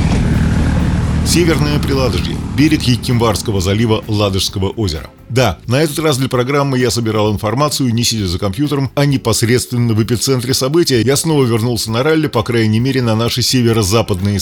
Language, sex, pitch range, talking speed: Russian, male, 105-135 Hz, 150 wpm